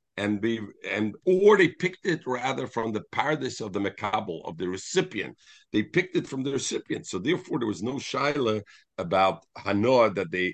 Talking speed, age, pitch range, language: 190 wpm, 50-69, 110-165 Hz, English